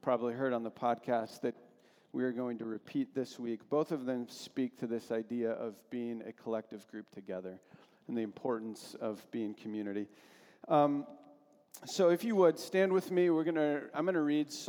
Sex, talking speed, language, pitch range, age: male, 190 wpm, English, 120-145 Hz, 40-59